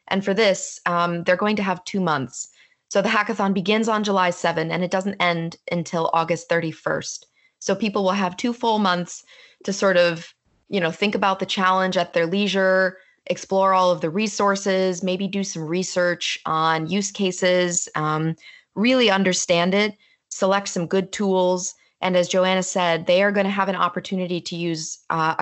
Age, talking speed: 20-39, 180 wpm